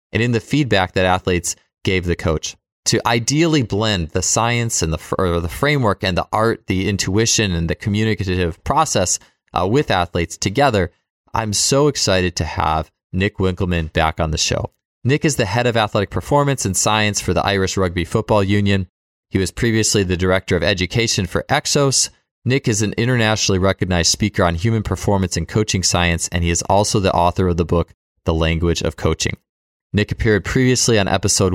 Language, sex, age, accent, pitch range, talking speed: English, male, 20-39, American, 90-115 Hz, 185 wpm